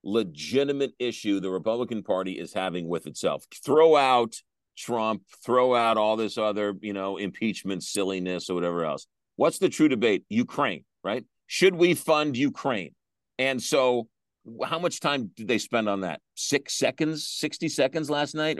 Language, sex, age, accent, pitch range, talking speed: English, male, 50-69, American, 110-150 Hz, 160 wpm